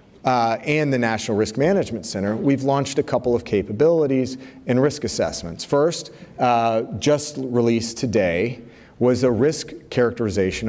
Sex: male